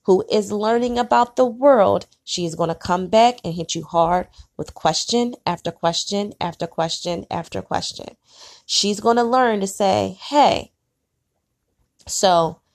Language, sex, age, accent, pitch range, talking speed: English, female, 20-39, American, 185-235 Hz, 140 wpm